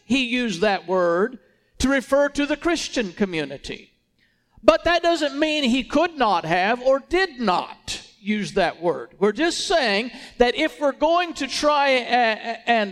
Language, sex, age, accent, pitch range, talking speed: English, male, 50-69, American, 190-300 Hz, 160 wpm